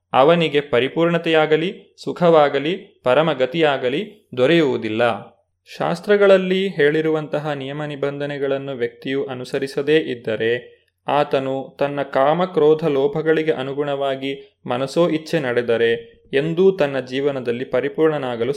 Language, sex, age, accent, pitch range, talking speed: Kannada, male, 30-49, native, 135-165 Hz, 80 wpm